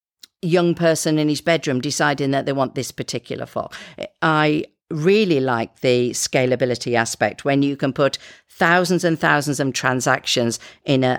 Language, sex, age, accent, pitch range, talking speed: English, female, 50-69, British, 125-170 Hz, 155 wpm